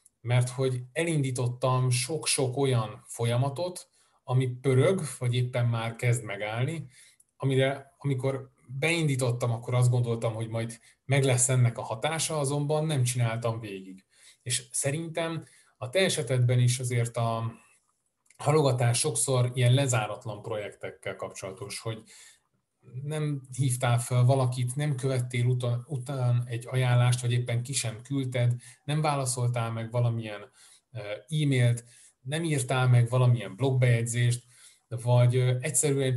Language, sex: Hungarian, male